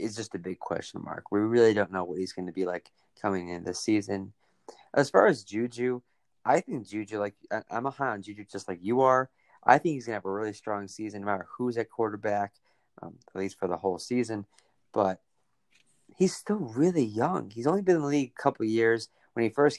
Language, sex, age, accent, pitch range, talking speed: English, male, 20-39, American, 100-125 Hz, 235 wpm